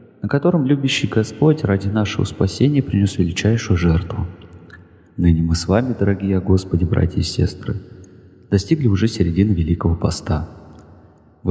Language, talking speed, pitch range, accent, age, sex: Russian, 130 wpm, 90-120 Hz, native, 30-49, male